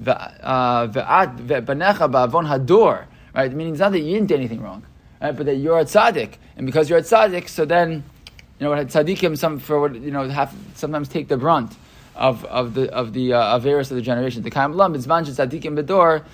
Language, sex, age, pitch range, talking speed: English, male, 20-39, 125-160 Hz, 205 wpm